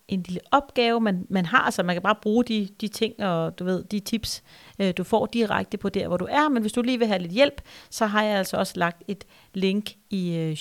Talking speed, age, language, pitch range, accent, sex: 260 wpm, 40-59, Danish, 185-240 Hz, native, female